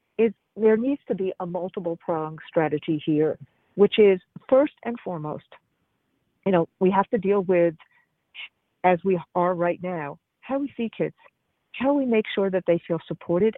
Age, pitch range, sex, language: 50-69, 175-220 Hz, female, English